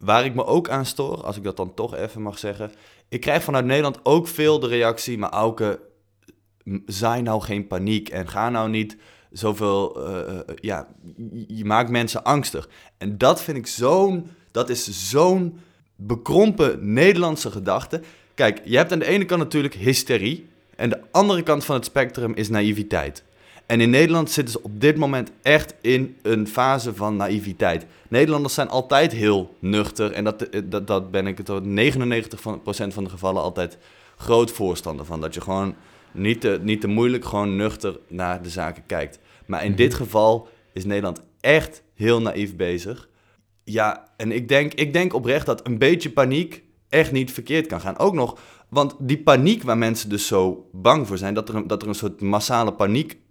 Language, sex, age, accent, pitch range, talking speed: Dutch, male, 20-39, Dutch, 100-135 Hz, 180 wpm